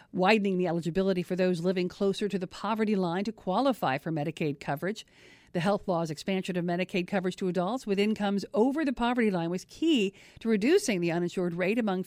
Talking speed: 195 wpm